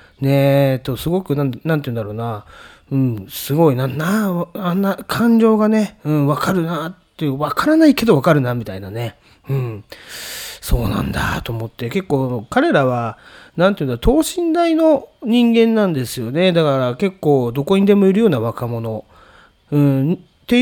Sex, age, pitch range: male, 30-49, 125-185 Hz